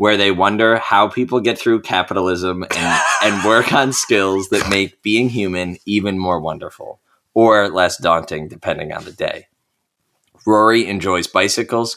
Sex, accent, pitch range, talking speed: male, American, 85-100 Hz, 150 wpm